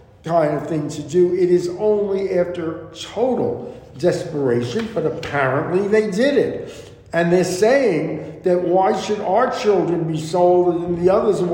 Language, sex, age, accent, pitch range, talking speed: English, male, 60-79, American, 140-190 Hz, 150 wpm